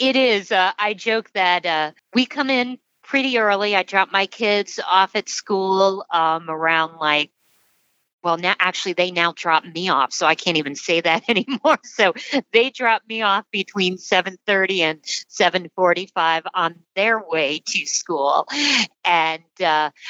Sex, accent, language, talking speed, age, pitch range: female, American, English, 135 wpm, 50-69, 160-200 Hz